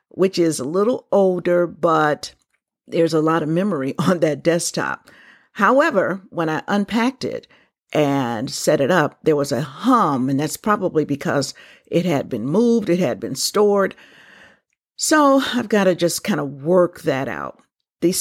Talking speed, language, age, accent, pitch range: 165 wpm, English, 50-69, American, 155-200 Hz